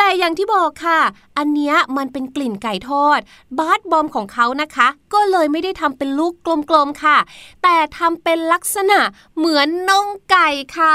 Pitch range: 240-315 Hz